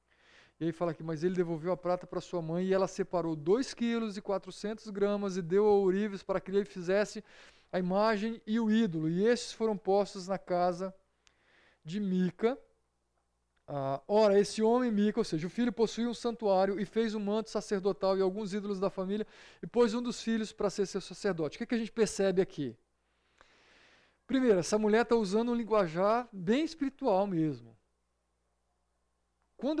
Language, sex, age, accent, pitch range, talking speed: Portuguese, male, 20-39, Brazilian, 150-220 Hz, 180 wpm